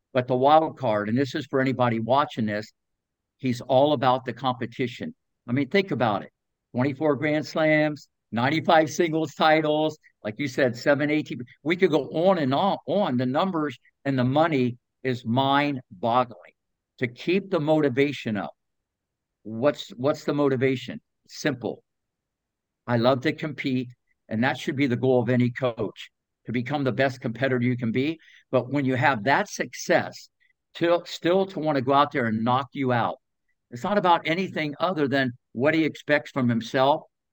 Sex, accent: male, American